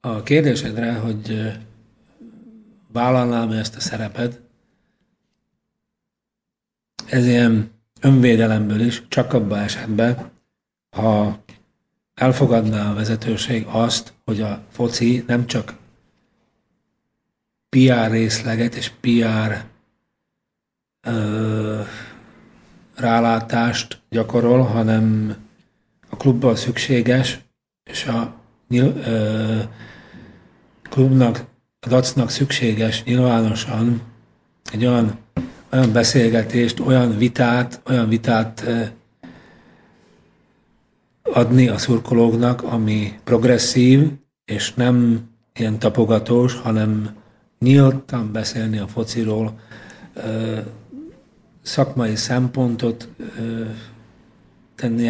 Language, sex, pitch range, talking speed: Slovak, male, 110-125 Hz, 75 wpm